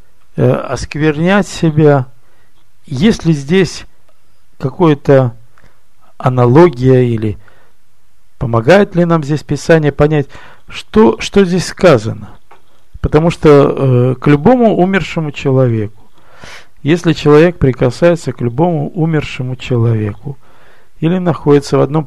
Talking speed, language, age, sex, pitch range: 95 wpm, Russian, 50-69, male, 115-160 Hz